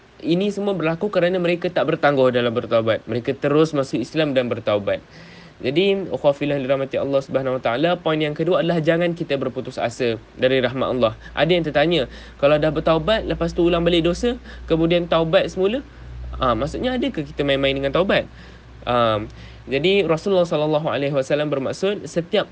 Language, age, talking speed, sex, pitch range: Malay, 20-39, 155 wpm, male, 135-185 Hz